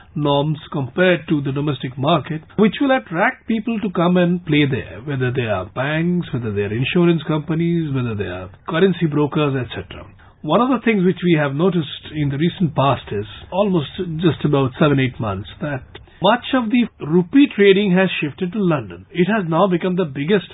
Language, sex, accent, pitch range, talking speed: English, male, Indian, 140-190 Hz, 190 wpm